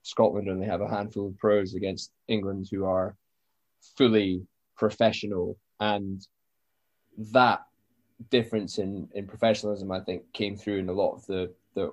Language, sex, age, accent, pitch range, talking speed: English, male, 20-39, British, 100-115 Hz, 145 wpm